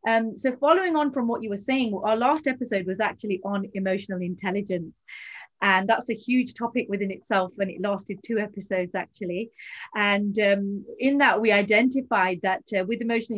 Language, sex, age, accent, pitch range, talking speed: English, female, 30-49, British, 195-230 Hz, 180 wpm